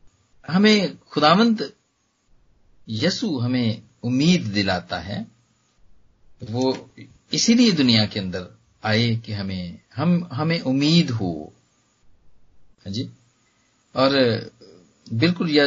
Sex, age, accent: male, 40-59, native